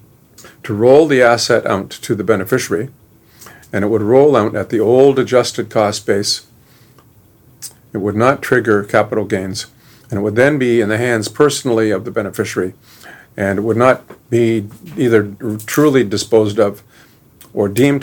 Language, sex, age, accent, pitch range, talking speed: English, male, 50-69, American, 105-125 Hz, 160 wpm